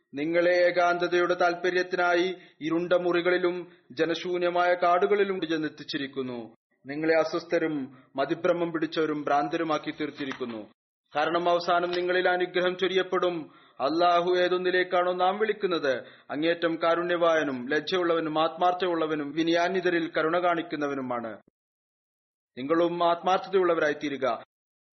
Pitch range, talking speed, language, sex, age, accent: 160-180 Hz, 80 wpm, Malayalam, male, 30-49, native